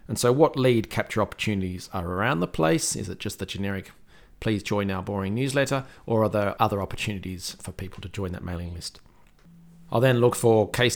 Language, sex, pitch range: English, male, 90-105 Hz